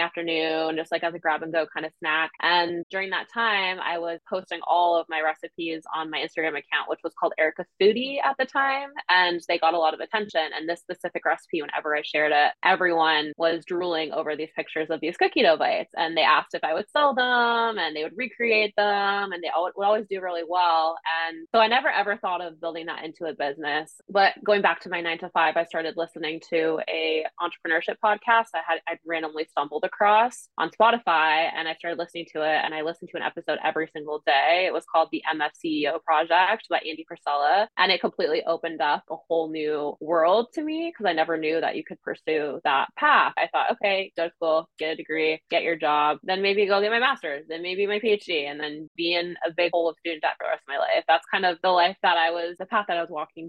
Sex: female